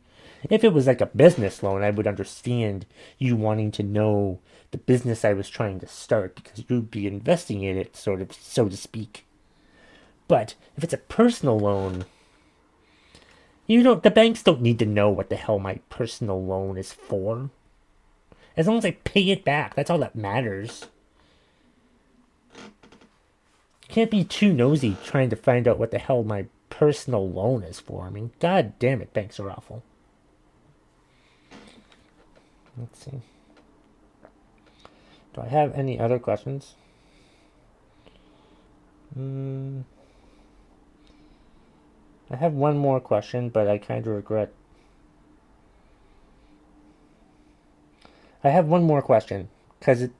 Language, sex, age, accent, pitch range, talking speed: English, male, 30-49, American, 100-135 Hz, 135 wpm